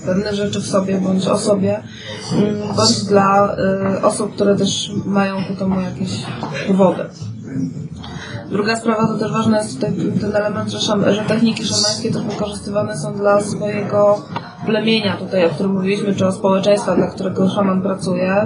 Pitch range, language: 195-215 Hz, Polish